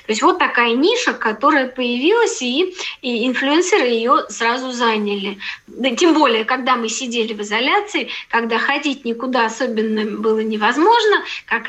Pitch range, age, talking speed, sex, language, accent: 220-300 Hz, 20-39, 145 wpm, female, Russian, native